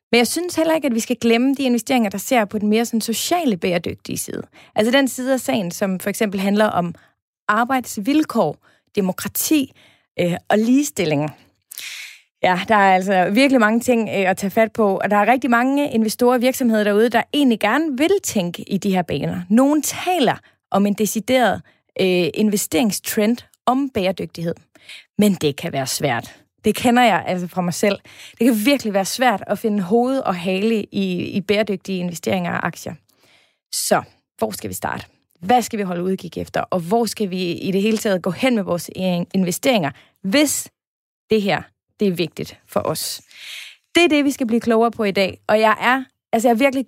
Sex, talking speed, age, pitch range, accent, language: female, 195 wpm, 30-49, 195-245 Hz, native, Danish